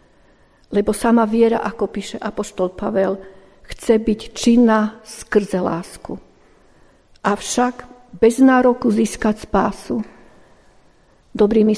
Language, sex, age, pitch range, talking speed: Slovak, female, 50-69, 195-230 Hz, 90 wpm